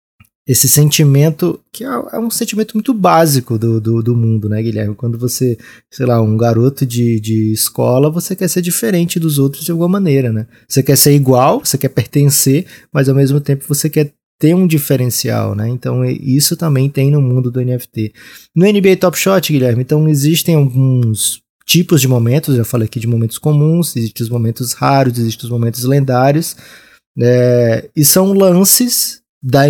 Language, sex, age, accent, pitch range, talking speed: Portuguese, male, 20-39, Brazilian, 125-155 Hz, 180 wpm